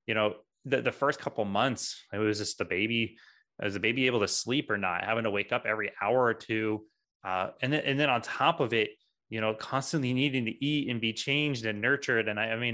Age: 20-39